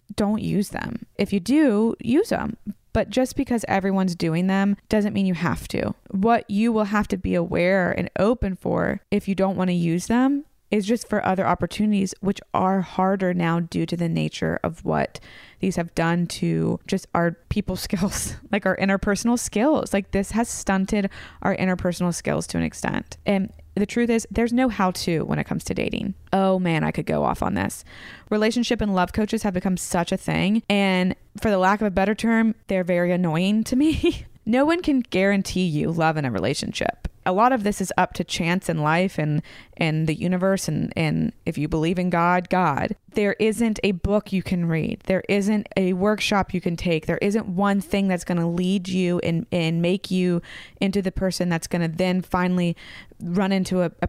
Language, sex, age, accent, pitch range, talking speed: English, female, 20-39, American, 175-210 Hz, 205 wpm